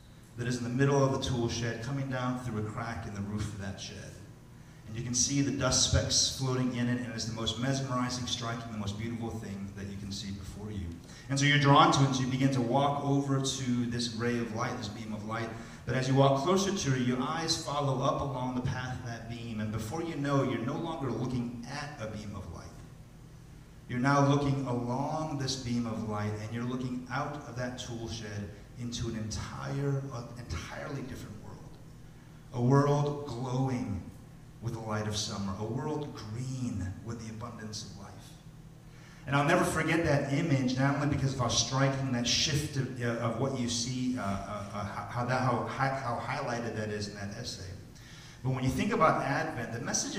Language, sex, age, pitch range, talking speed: English, male, 30-49, 115-140 Hz, 210 wpm